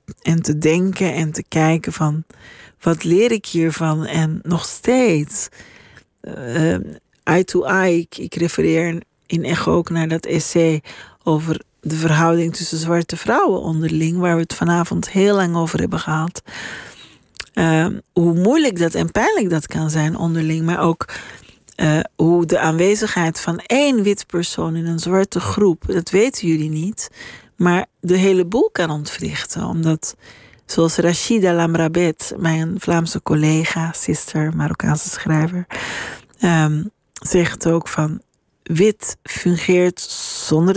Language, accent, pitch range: Dutch, Dutch, 160-180 Hz